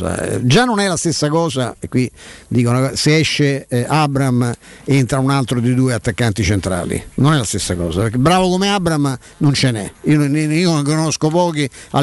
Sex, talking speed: male, 190 wpm